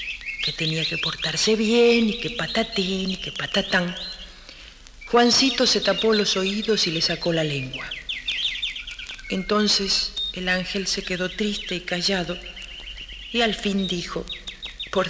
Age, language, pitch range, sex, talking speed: 40-59, Spanish, 175-220 Hz, female, 135 wpm